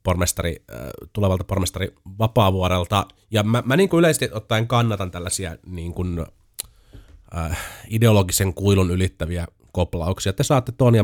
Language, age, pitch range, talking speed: Finnish, 30-49, 85-105 Hz, 130 wpm